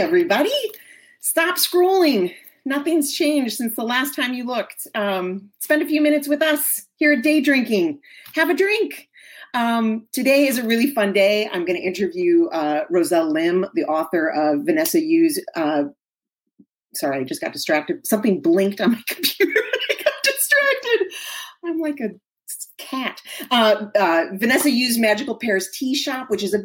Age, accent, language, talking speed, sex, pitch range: 30-49, American, English, 160 wpm, female, 195-300 Hz